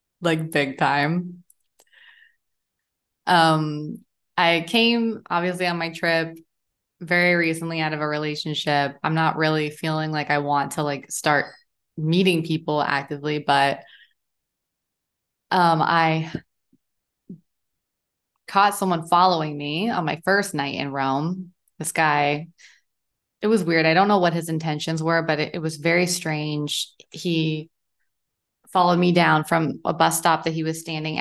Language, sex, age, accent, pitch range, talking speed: English, female, 20-39, American, 155-185 Hz, 140 wpm